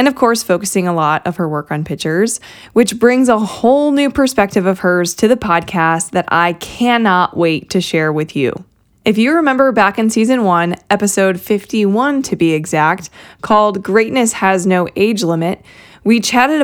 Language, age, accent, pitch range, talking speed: English, 20-39, American, 175-230 Hz, 180 wpm